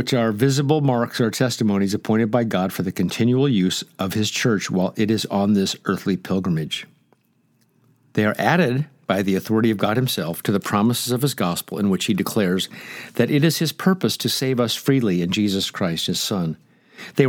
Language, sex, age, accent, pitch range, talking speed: English, male, 50-69, American, 105-135 Hz, 200 wpm